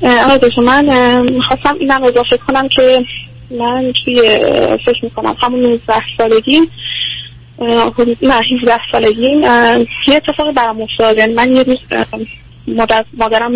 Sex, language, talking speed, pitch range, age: female, Persian, 120 wpm, 215-265 Hz, 20-39